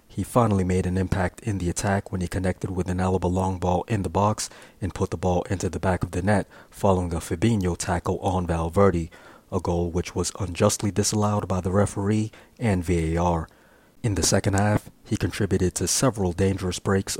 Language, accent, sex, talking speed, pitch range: English, American, male, 195 wpm, 90-105 Hz